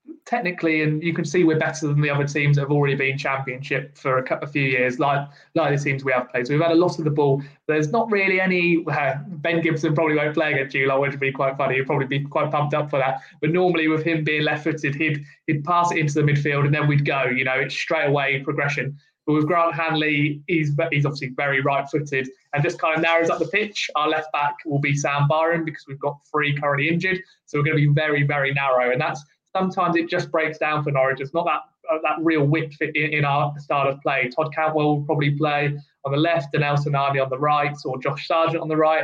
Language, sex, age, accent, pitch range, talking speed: English, male, 20-39, British, 145-160 Hz, 255 wpm